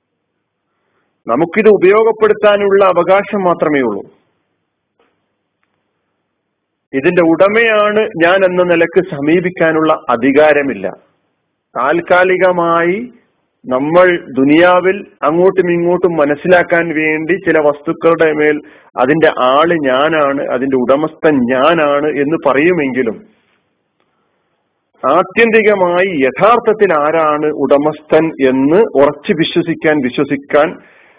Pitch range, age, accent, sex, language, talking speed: 140-180 Hz, 40-59, native, male, Malayalam, 75 wpm